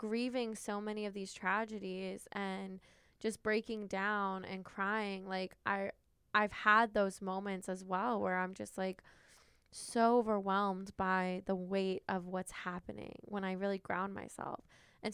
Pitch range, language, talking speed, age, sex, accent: 190-220 Hz, English, 150 wpm, 10-29, female, American